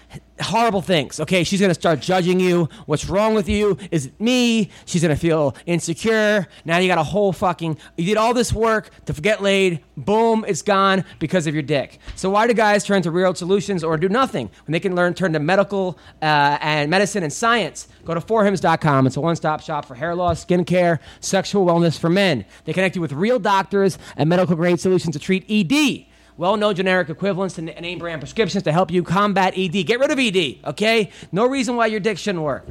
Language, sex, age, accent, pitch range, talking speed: English, male, 30-49, American, 160-205 Hz, 215 wpm